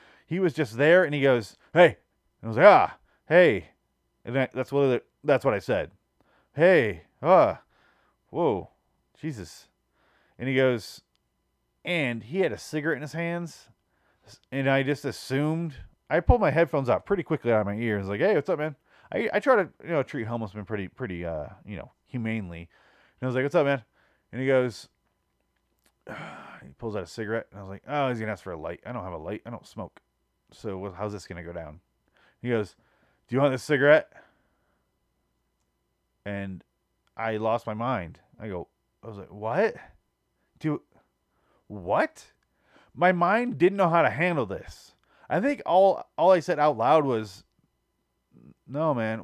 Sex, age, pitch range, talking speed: male, 30-49, 105-170 Hz, 190 wpm